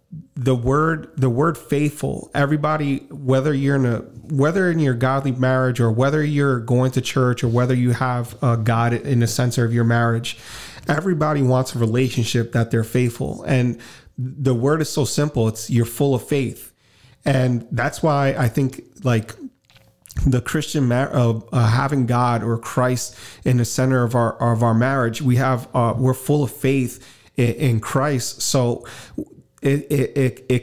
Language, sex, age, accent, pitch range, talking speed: English, male, 30-49, American, 120-135 Hz, 175 wpm